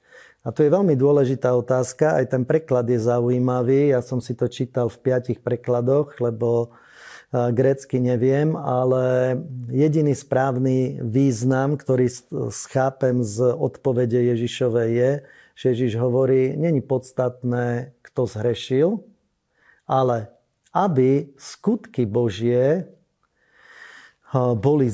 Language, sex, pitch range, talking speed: Slovak, male, 120-140 Hz, 105 wpm